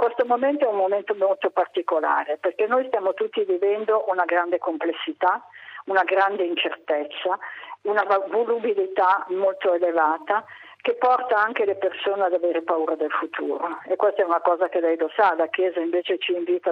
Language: Italian